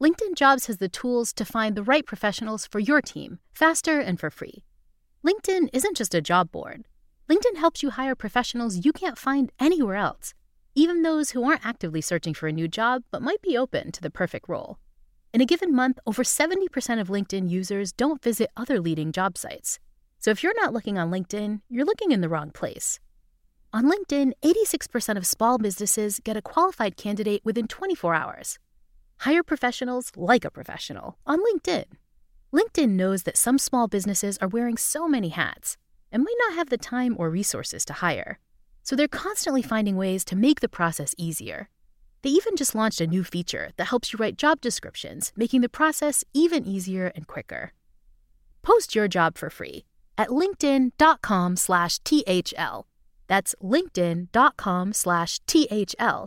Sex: female